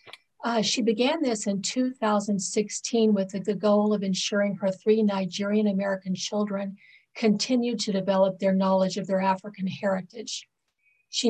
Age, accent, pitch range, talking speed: 50-69, American, 190-215 Hz, 140 wpm